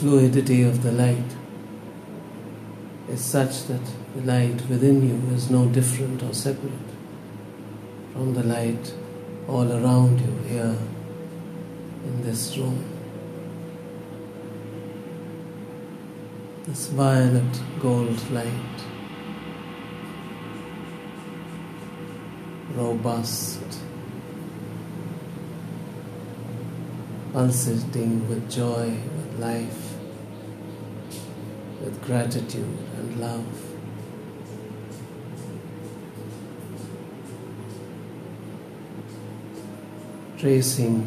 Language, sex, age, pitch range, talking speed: English, male, 60-79, 110-135 Hz, 60 wpm